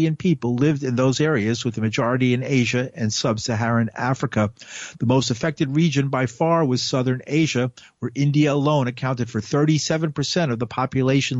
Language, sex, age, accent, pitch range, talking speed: English, male, 50-69, American, 115-145 Hz, 165 wpm